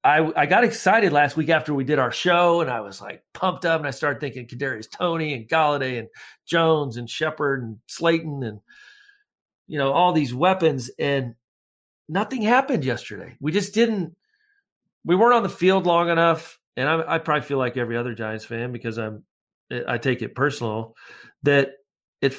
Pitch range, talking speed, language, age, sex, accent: 120-165 Hz, 185 wpm, English, 40-59, male, American